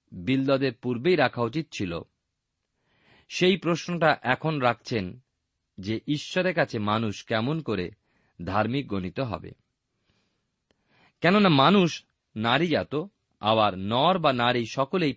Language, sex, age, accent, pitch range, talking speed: Bengali, male, 40-59, native, 110-160 Hz, 105 wpm